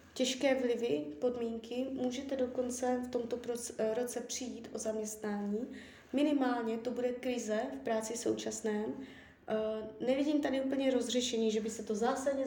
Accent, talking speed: native, 130 wpm